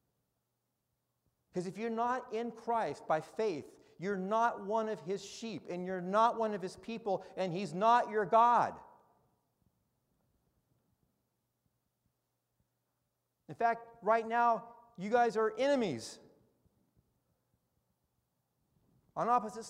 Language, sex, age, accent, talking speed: English, male, 50-69, American, 110 wpm